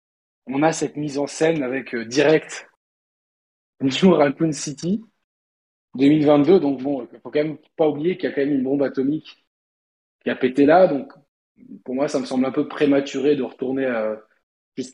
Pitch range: 125-160 Hz